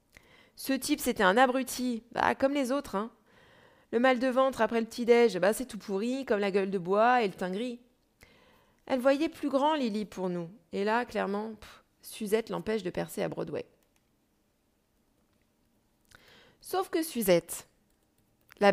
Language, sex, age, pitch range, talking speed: French, female, 20-39, 195-265 Hz, 170 wpm